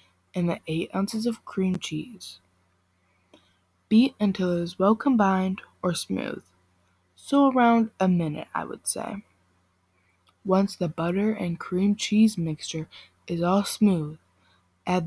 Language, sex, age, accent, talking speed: English, female, 20-39, American, 130 wpm